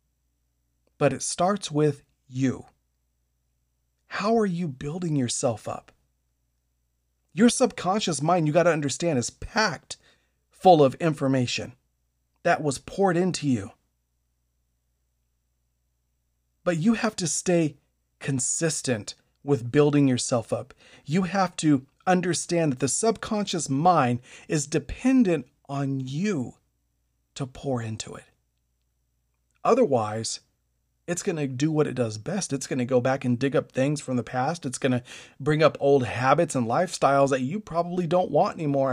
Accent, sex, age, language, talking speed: American, male, 40-59, English, 140 wpm